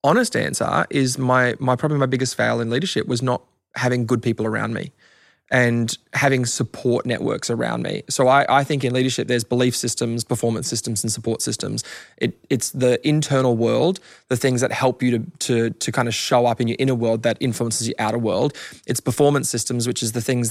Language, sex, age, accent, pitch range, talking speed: English, male, 20-39, Australian, 115-130 Hz, 210 wpm